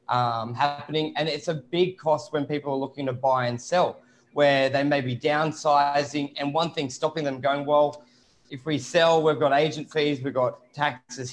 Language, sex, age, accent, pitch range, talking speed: English, male, 20-39, Australian, 135-155 Hz, 195 wpm